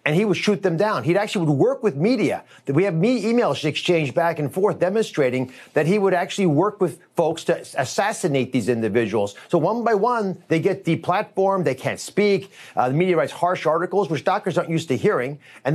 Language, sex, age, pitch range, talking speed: English, male, 40-59, 150-205 Hz, 215 wpm